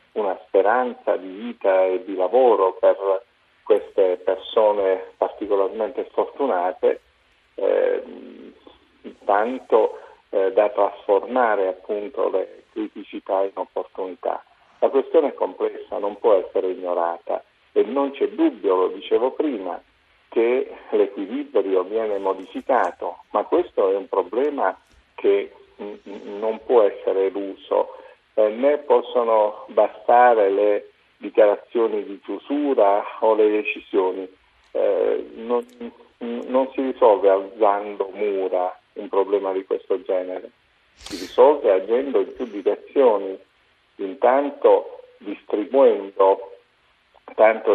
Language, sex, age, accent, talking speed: Italian, male, 50-69, native, 105 wpm